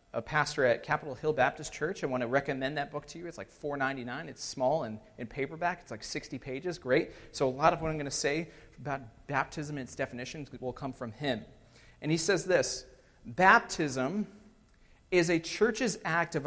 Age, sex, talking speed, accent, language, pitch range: 40-59, male, 205 wpm, American, English, 130-180 Hz